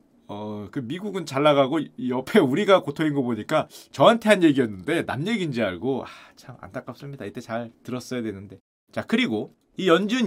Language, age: Korean, 30-49